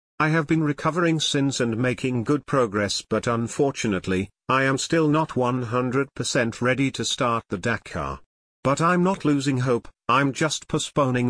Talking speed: 155 wpm